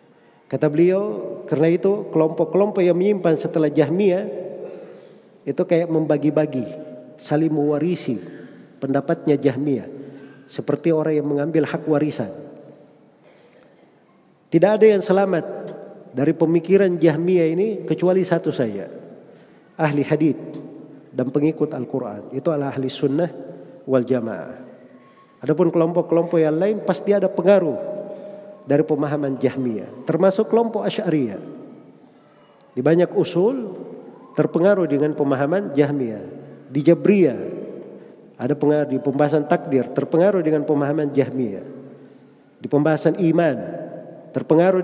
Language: Indonesian